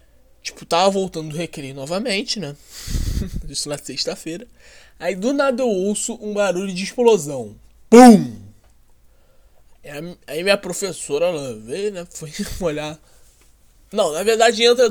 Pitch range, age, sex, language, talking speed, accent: 140-210 Hz, 20-39, male, Portuguese, 130 wpm, Brazilian